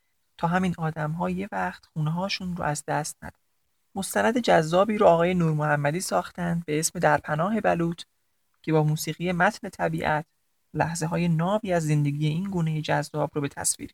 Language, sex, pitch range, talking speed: Persian, male, 155-195 Hz, 160 wpm